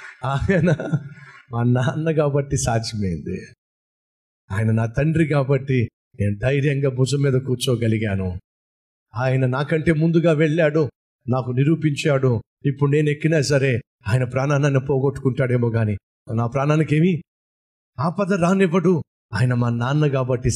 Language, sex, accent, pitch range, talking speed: Telugu, male, native, 125-180 Hz, 110 wpm